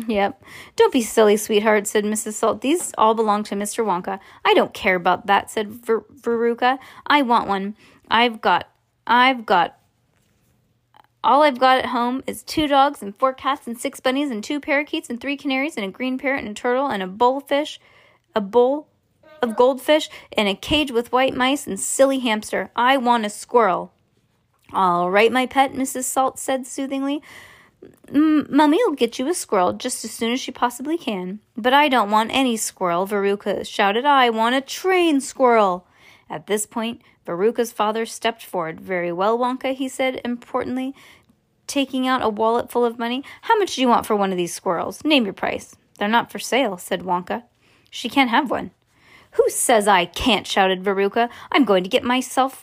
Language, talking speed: English, 185 wpm